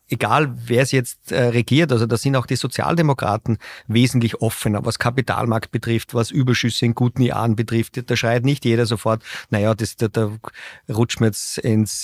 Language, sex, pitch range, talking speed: German, male, 115-130 Hz, 175 wpm